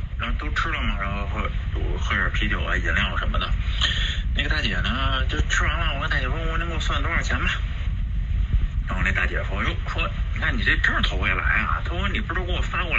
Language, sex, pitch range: Chinese, male, 75-95 Hz